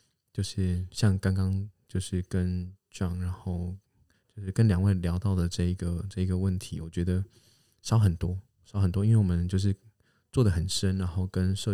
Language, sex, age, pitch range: Chinese, male, 20-39, 90-105 Hz